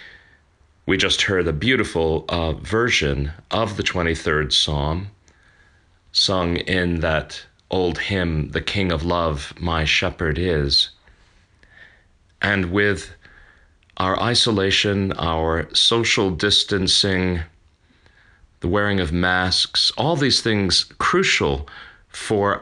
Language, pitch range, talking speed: English, 80-95 Hz, 105 wpm